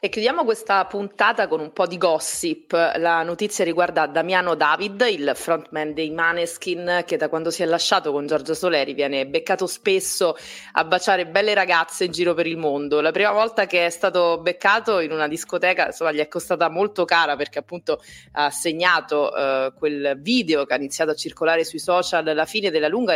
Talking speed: 190 wpm